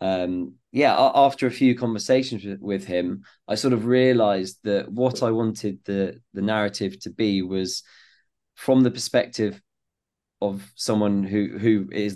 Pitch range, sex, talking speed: 100-115 Hz, male, 150 wpm